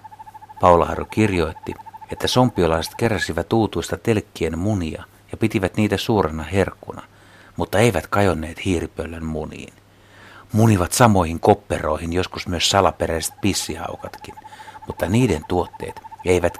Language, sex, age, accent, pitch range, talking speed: Finnish, male, 60-79, native, 90-125 Hz, 110 wpm